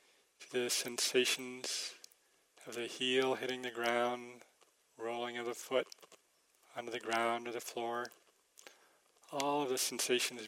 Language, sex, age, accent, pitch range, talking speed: English, male, 40-59, American, 120-140 Hz, 125 wpm